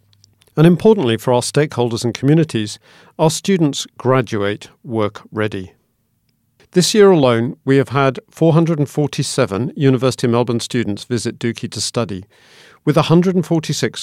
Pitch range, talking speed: 110-140 Hz, 125 wpm